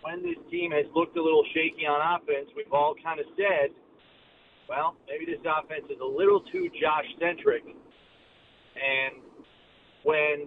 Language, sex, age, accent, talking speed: English, male, 40-59, American, 150 wpm